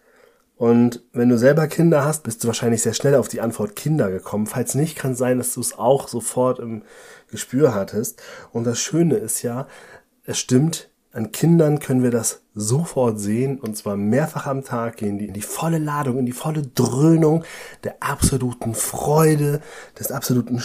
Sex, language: male, German